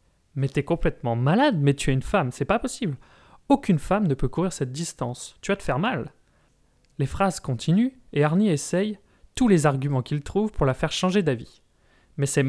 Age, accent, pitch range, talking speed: 30-49, French, 130-170 Hz, 200 wpm